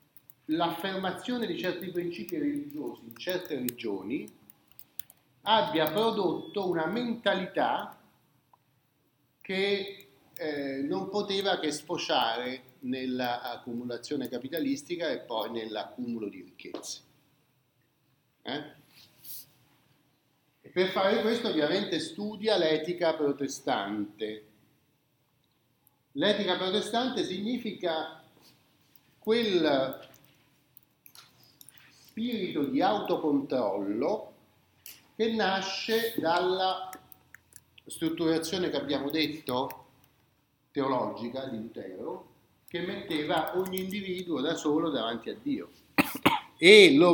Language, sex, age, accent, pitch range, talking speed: Italian, male, 50-69, native, 140-200 Hz, 75 wpm